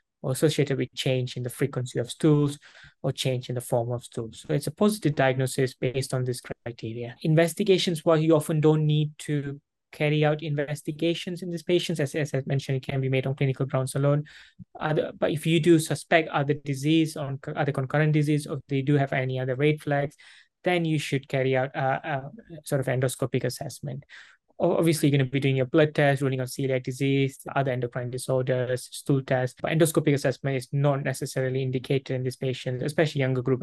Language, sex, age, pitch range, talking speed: English, male, 20-39, 130-150 Hz, 195 wpm